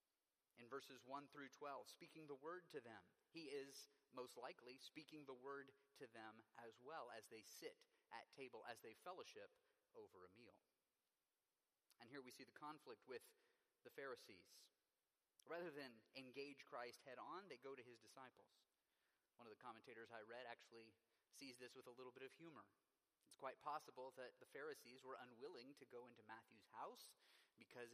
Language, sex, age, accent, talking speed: English, male, 30-49, American, 175 wpm